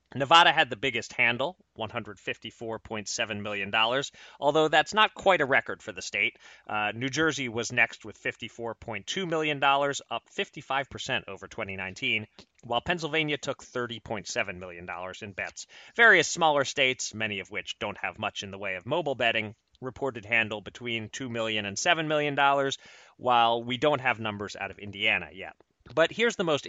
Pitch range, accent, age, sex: 110-140 Hz, American, 30-49, male